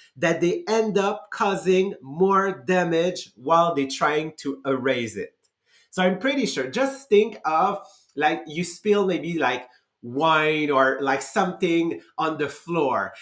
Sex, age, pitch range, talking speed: male, 30-49, 145-190 Hz, 145 wpm